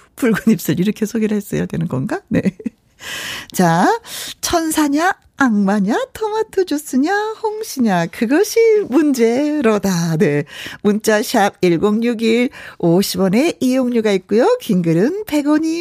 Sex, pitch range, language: female, 205-325 Hz, Korean